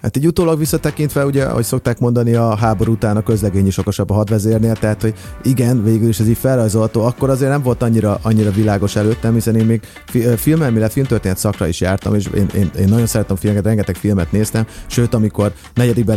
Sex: male